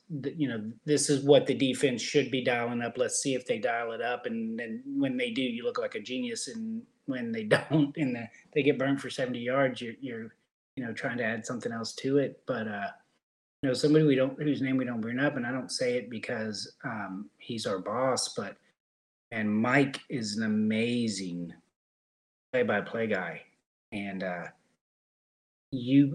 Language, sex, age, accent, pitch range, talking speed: English, male, 30-49, American, 110-150 Hz, 195 wpm